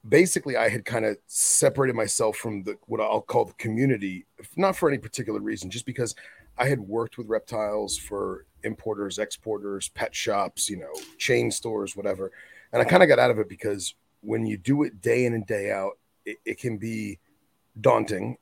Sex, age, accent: male, 30-49, American